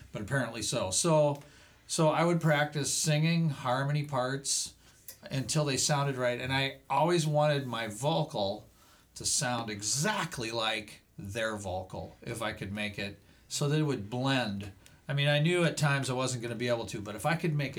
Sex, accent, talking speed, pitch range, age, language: male, American, 185 wpm, 105-145 Hz, 40-59, English